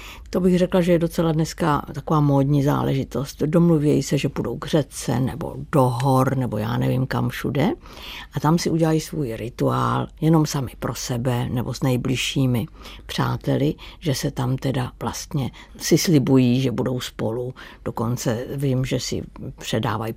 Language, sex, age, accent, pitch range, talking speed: Czech, female, 60-79, native, 130-155 Hz, 160 wpm